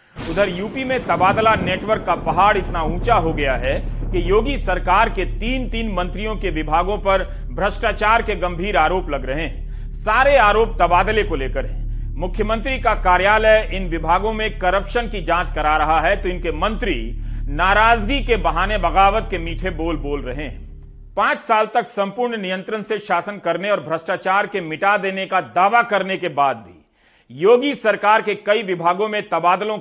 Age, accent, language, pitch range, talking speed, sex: 40-59, native, Hindi, 175-225 Hz, 170 wpm, male